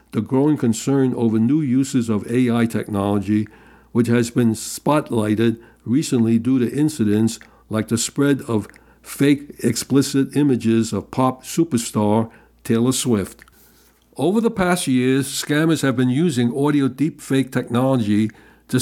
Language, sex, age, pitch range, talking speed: English, male, 60-79, 115-140 Hz, 130 wpm